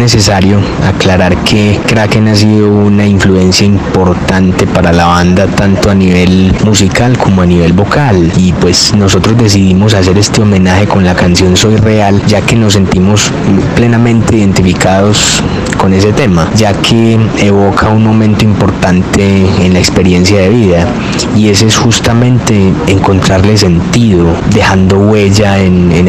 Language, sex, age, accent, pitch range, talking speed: Spanish, male, 20-39, Colombian, 95-105 Hz, 145 wpm